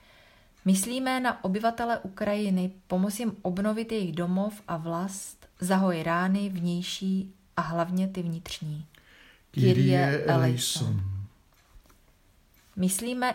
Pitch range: 165-200 Hz